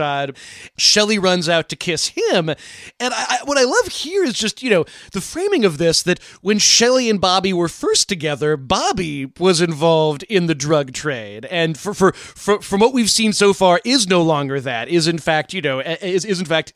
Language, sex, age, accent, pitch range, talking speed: English, male, 30-49, American, 150-195 Hz, 210 wpm